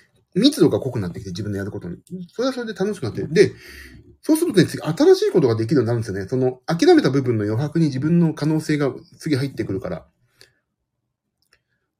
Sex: male